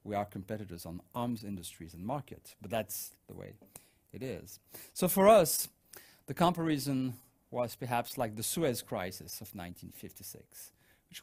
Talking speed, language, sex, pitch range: 150 wpm, English, male, 100-140 Hz